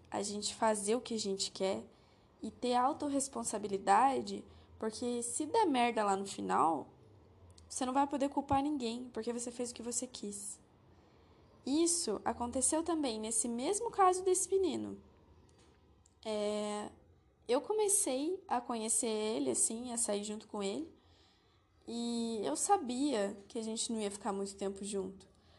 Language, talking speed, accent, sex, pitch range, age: Portuguese, 150 wpm, Brazilian, female, 215-280 Hz, 10-29